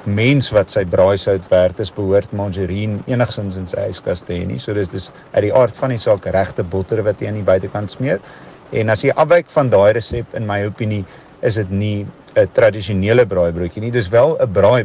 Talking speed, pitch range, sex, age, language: 210 wpm, 95-125 Hz, male, 50-69, English